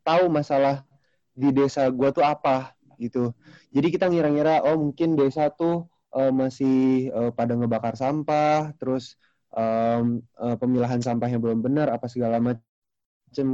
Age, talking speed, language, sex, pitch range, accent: 20-39, 140 wpm, Indonesian, male, 120-145 Hz, native